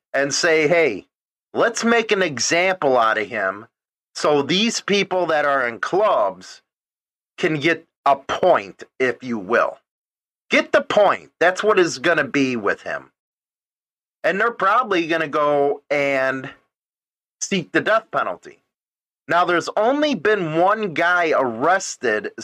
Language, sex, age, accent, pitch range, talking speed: English, male, 40-59, American, 145-210 Hz, 140 wpm